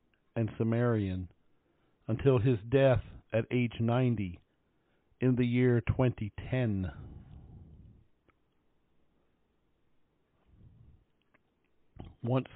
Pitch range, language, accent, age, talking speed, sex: 105-125 Hz, English, American, 60-79, 60 wpm, male